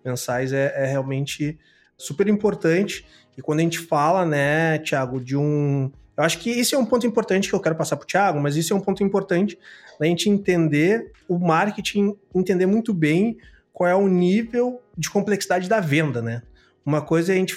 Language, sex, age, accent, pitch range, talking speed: Portuguese, male, 30-49, Brazilian, 145-195 Hz, 200 wpm